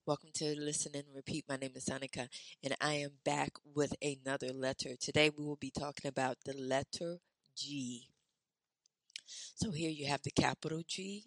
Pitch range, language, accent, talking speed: 135-185 Hz, English, American, 170 wpm